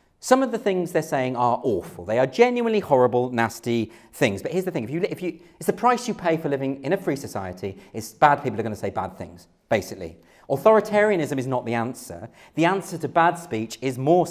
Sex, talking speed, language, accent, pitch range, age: male, 230 wpm, English, British, 140-210 Hz, 40-59